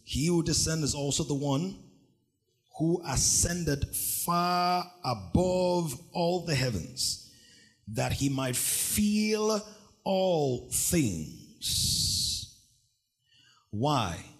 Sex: male